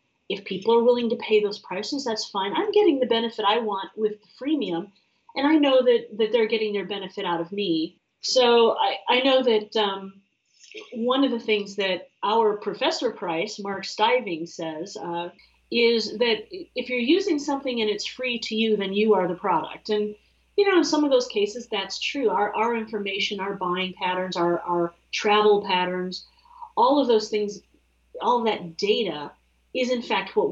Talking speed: 190 wpm